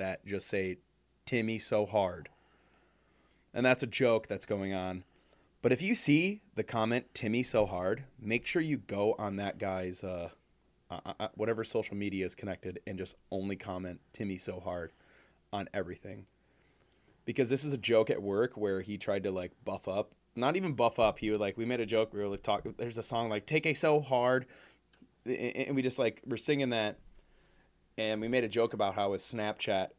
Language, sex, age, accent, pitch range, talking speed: English, male, 30-49, American, 105-135 Hz, 195 wpm